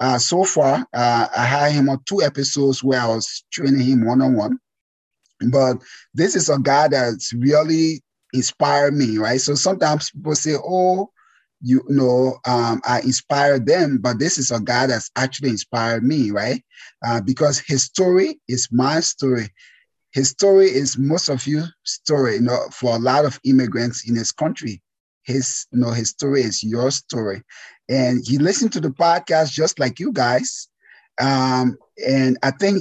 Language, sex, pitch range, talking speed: English, male, 125-150 Hz, 175 wpm